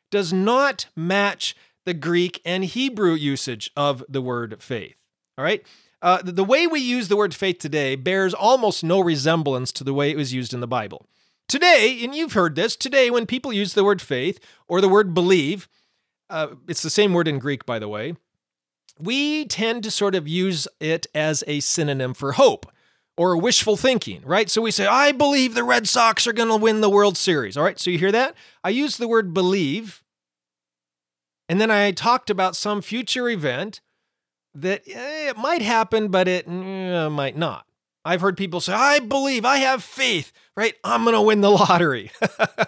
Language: English